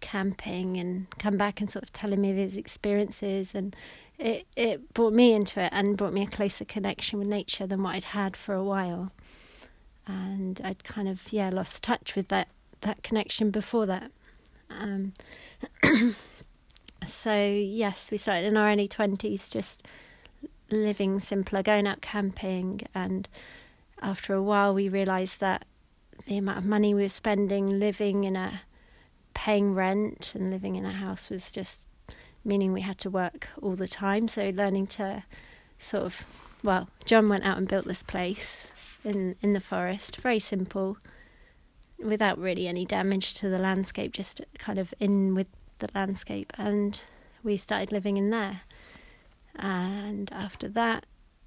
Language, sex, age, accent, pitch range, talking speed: English, female, 30-49, British, 190-210 Hz, 160 wpm